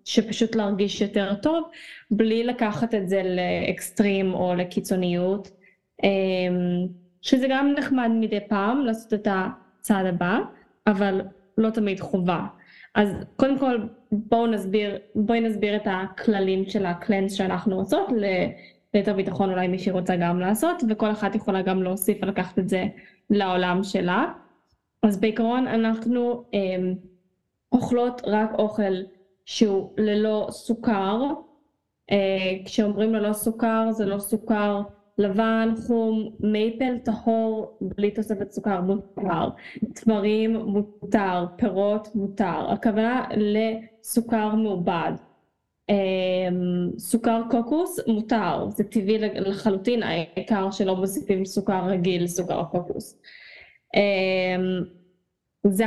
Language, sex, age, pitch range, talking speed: Hebrew, female, 10-29, 190-225 Hz, 105 wpm